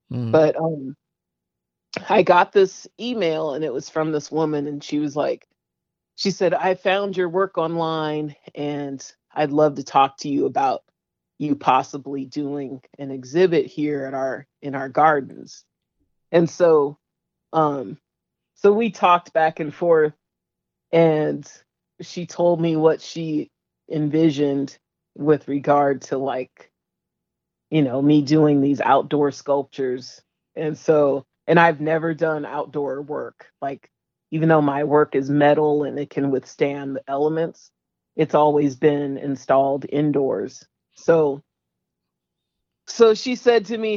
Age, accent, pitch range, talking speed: 40-59, American, 140-165 Hz, 140 wpm